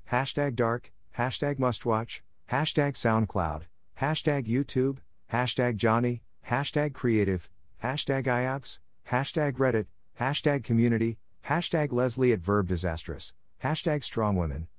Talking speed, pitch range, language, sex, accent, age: 110 wpm, 105-135 Hz, English, male, American, 50-69